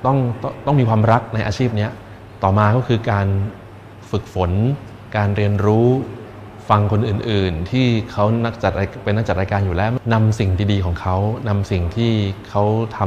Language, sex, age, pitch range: Thai, male, 20-39, 95-110 Hz